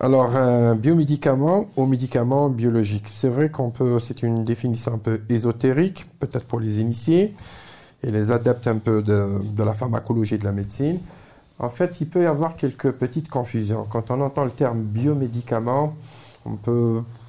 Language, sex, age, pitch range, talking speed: French, male, 50-69, 110-135 Hz, 170 wpm